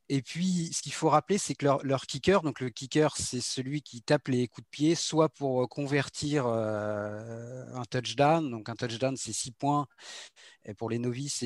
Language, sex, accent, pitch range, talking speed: French, male, French, 130-170 Hz, 195 wpm